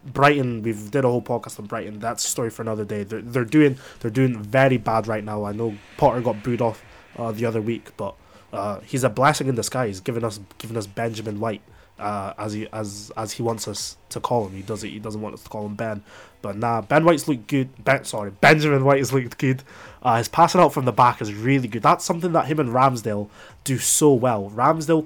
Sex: male